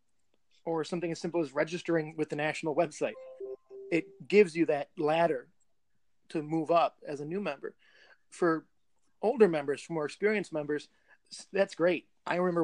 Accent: American